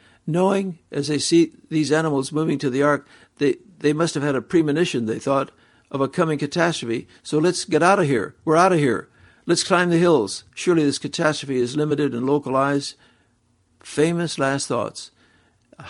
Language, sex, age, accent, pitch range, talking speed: English, male, 60-79, American, 125-160 Hz, 180 wpm